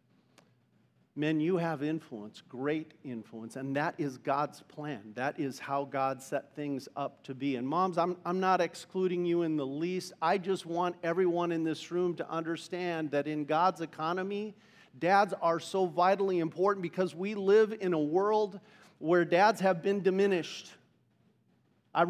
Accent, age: American, 50-69